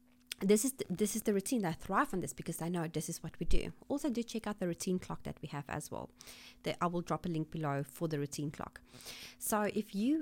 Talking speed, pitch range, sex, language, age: 265 wpm, 170-220 Hz, female, English, 30-49